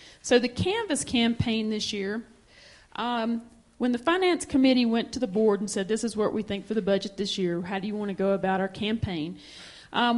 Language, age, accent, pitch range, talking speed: English, 40-59, American, 195-235 Hz, 220 wpm